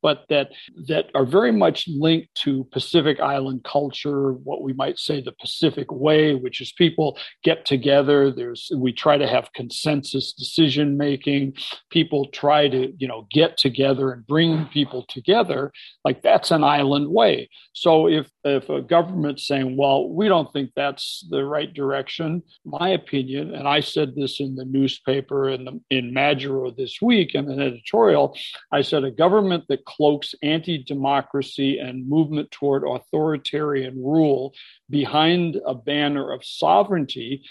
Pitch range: 135-155 Hz